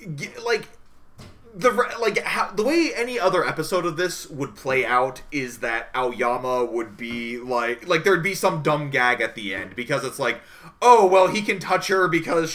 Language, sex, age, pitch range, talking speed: English, male, 30-49, 125-190 Hz, 190 wpm